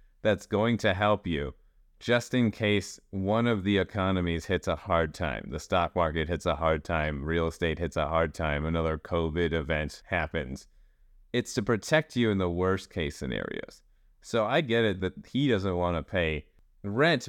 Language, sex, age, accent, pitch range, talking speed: English, male, 30-49, American, 85-115 Hz, 185 wpm